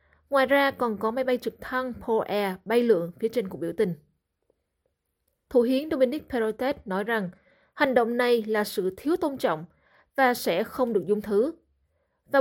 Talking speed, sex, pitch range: 180 wpm, female, 200-260 Hz